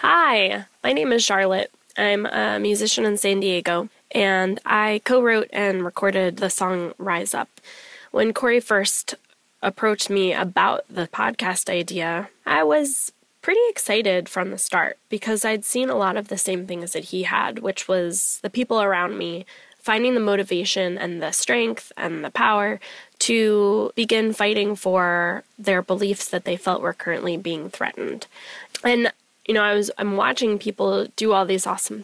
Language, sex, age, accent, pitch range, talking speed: English, female, 10-29, American, 185-215 Hz, 165 wpm